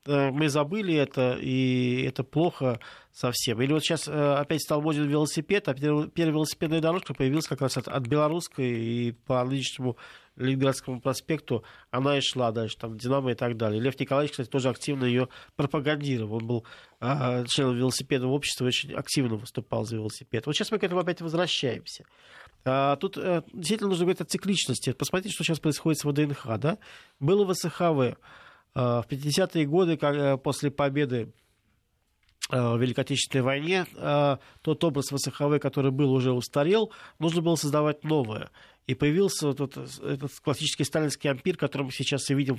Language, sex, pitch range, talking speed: Russian, male, 130-155 Hz, 150 wpm